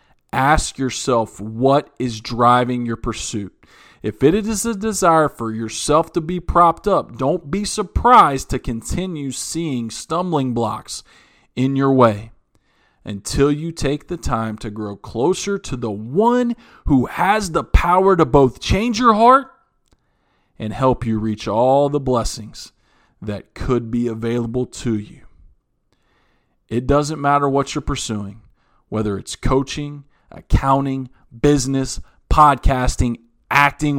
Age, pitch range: 40-59, 115-150 Hz